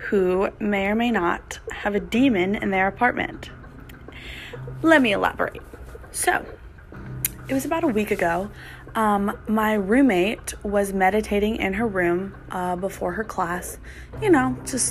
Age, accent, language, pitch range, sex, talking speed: 20-39, American, English, 185-235 Hz, female, 145 wpm